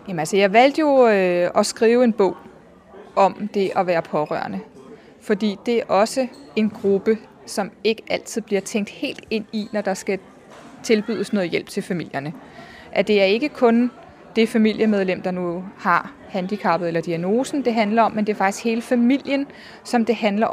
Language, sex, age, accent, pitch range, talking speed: Danish, female, 20-39, native, 210-250 Hz, 180 wpm